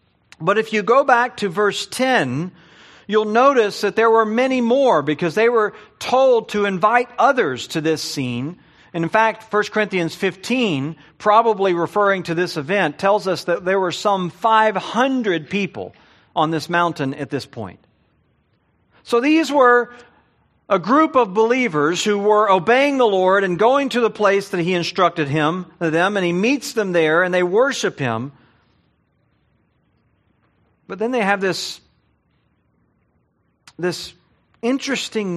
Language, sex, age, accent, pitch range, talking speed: English, male, 50-69, American, 140-210 Hz, 150 wpm